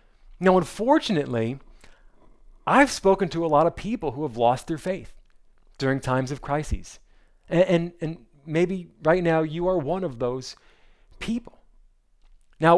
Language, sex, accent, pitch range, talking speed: English, male, American, 140-205 Hz, 140 wpm